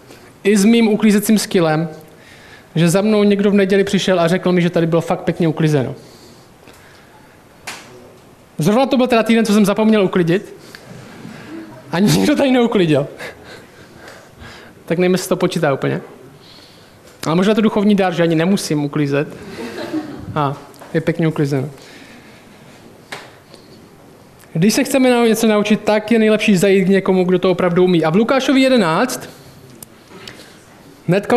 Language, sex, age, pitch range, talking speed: Czech, male, 20-39, 170-220 Hz, 140 wpm